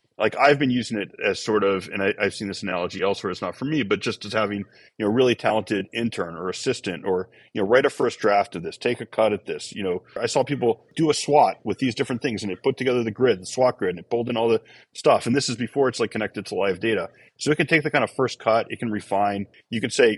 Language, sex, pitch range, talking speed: English, male, 100-120 Hz, 290 wpm